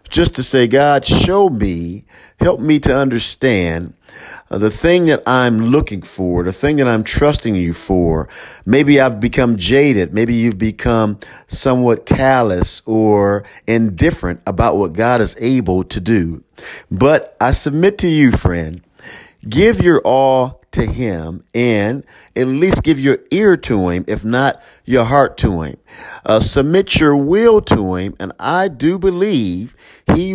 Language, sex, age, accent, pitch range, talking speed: English, male, 50-69, American, 110-145 Hz, 150 wpm